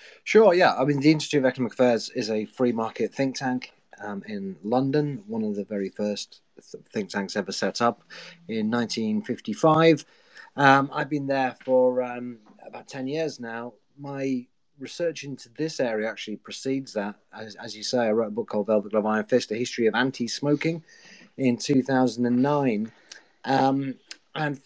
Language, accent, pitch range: English, British, 110-140 Hz